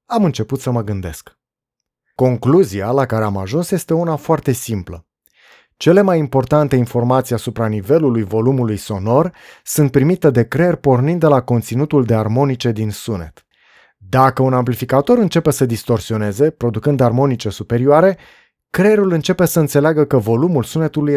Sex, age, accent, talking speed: male, 20-39, native, 140 wpm